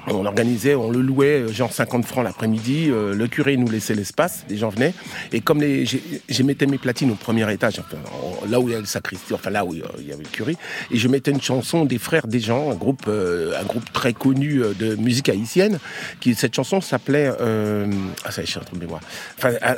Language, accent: French, French